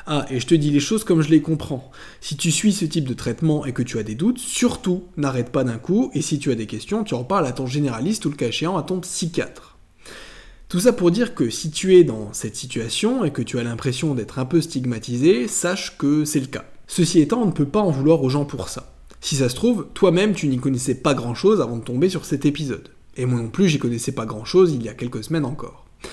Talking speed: 270 wpm